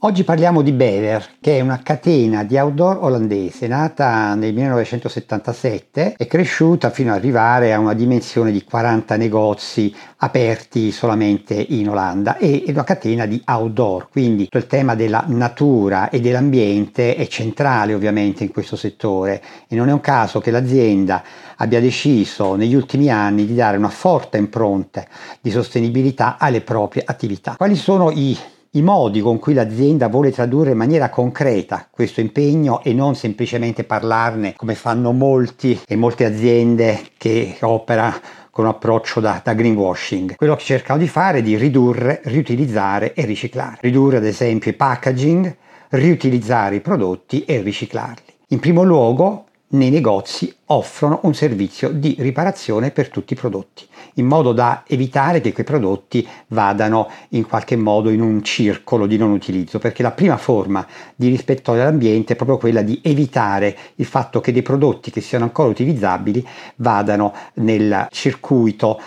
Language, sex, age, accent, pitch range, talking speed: Italian, male, 50-69, native, 110-135 Hz, 155 wpm